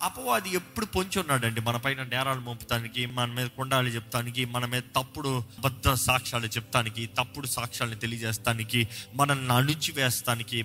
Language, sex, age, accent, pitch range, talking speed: Telugu, male, 20-39, native, 115-145 Hz, 145 wpm